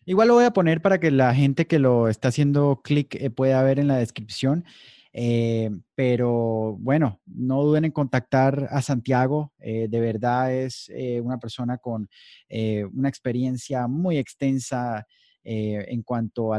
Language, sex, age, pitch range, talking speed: Spanish, male, 30-49, 120-145 Hz, 165 wpm